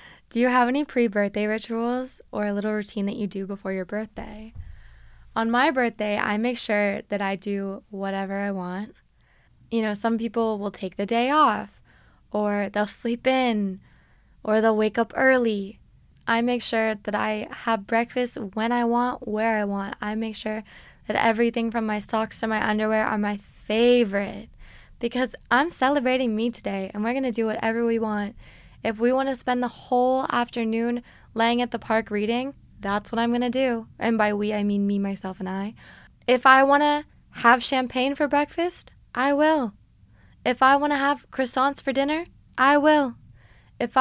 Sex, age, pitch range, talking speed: female, 10-29, 210-255 Hz, 175 wpm